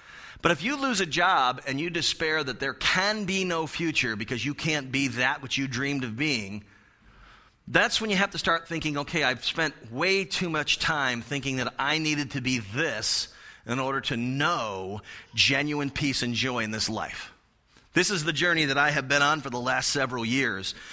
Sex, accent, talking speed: male, American, 205 wpm